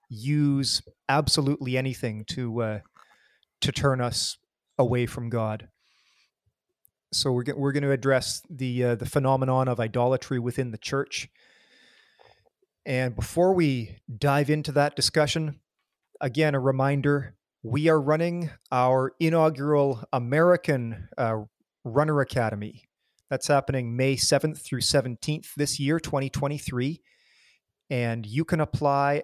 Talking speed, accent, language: 120 wpm, American, English